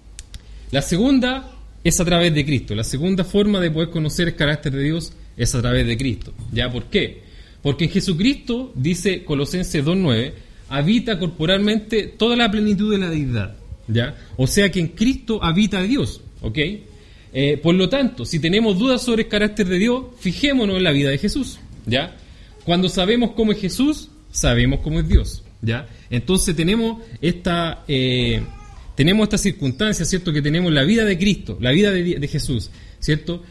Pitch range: 130-210 Hz